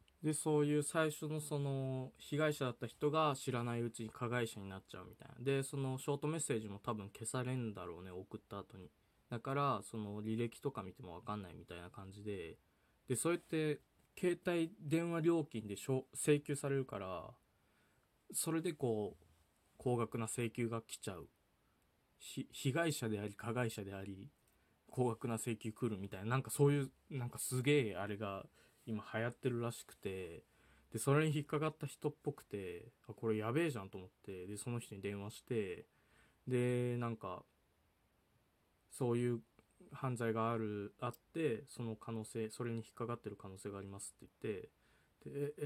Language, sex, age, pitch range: Japanese, male, 20-39, 105-140 Hz